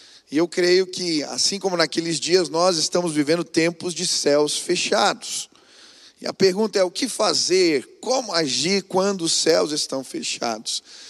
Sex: male